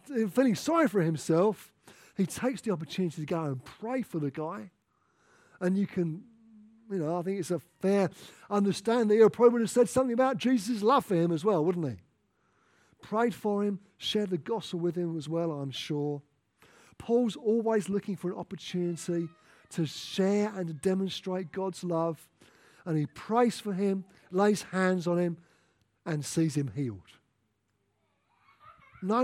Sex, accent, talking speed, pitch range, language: male, British, 165 wpm, 155-230 Hz, English